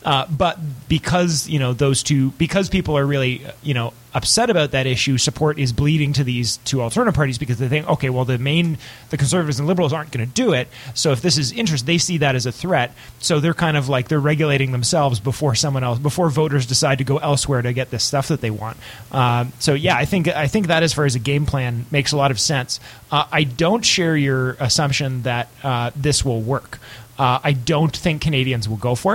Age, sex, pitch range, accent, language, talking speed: 30-49, male, 130-160 Hz, American, English, 235 wpm